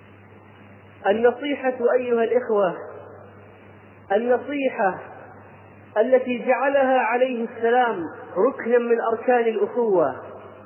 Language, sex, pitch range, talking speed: Arabic, male, 205-260 Hz, 70 wpm